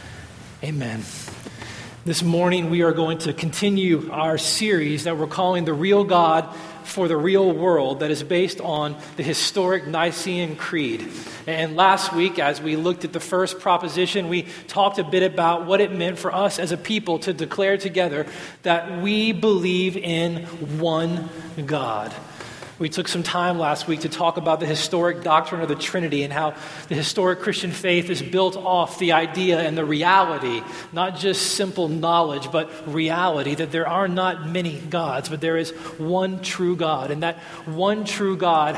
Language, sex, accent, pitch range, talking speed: English, male, American, 155-185 Hz, 175 wpm